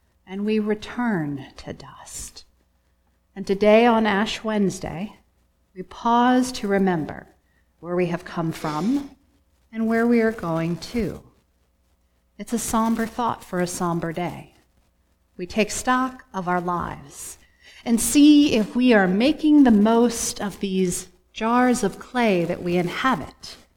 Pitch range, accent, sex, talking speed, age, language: 170-235 Hz, American, female, 140 wpm, 40-59, English